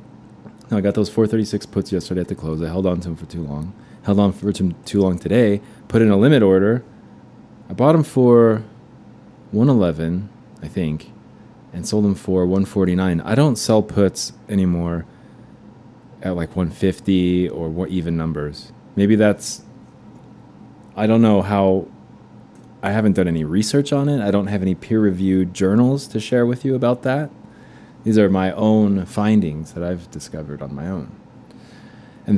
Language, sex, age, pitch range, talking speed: English, male, 20-39, 90-110 Hz, 165 wpm